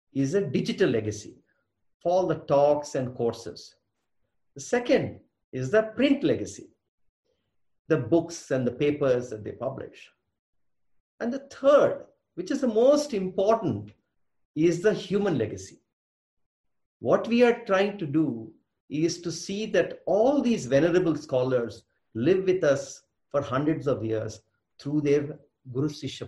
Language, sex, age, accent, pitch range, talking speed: English, male, 50-69, Indian, 115-180 Hz, 140 wpm